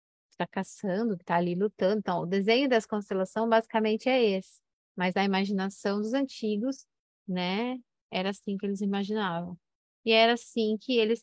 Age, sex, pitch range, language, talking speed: 20-39, female, 190-225 Hz, Portuguese, 150 wpm